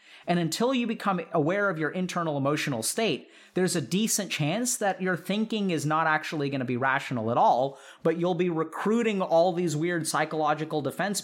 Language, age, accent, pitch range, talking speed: English, 30-49, American, 145-195 Hz, 185 wpm